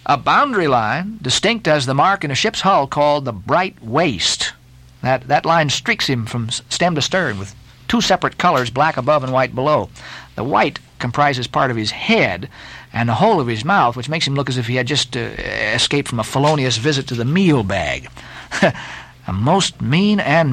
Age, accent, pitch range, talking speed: 50-69, American, 120-155 Hz, 200 wpm